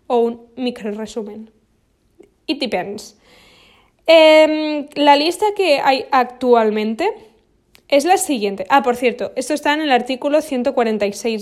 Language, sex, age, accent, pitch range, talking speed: English, female, 20-39, Spanish, 230-325 Hz, 125 wpm